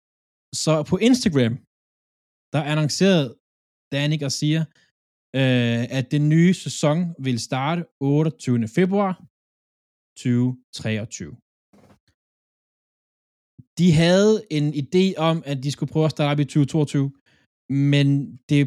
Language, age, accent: Danish, 20-39, native